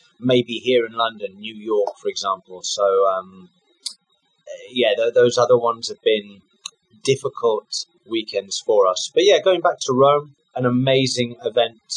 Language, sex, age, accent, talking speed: English, male, 20-39, British, 145 wpm